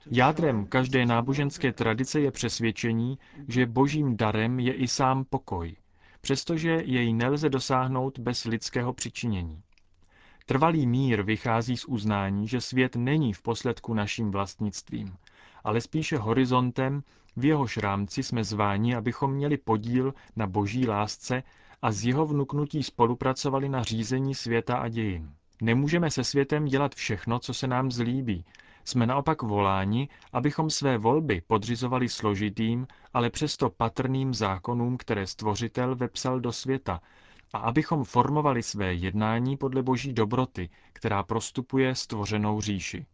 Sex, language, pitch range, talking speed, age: male, Czech, 110-135 Hz, 130 wpm, 30-49